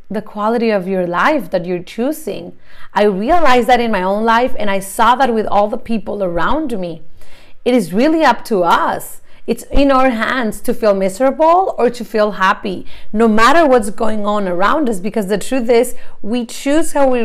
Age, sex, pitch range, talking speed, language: 30-49, female, 205-250 Hz, 200 wpm, English